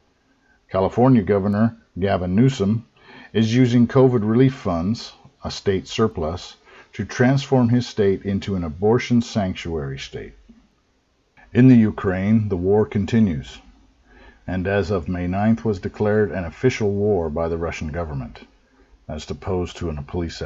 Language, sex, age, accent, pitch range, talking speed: English, male, 50-69, American, 85-105 Hz, 135 wpm